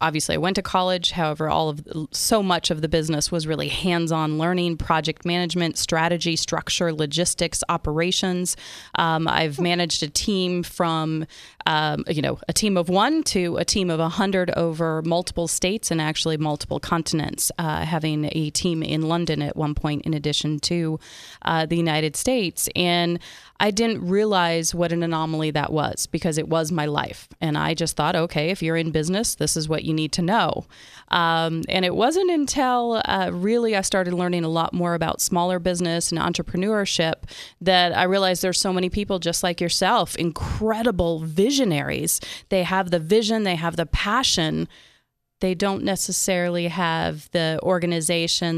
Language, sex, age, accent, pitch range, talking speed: English, female, 30-49, American, 160-185 Hz, 170 wpm